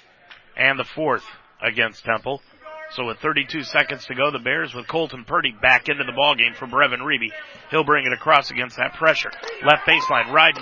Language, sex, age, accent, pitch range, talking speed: English, male, 40-59, American, 135-175 Hz, 185 wpm